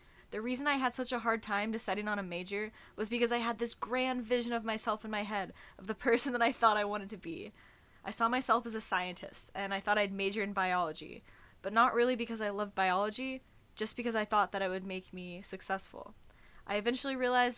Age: 10-29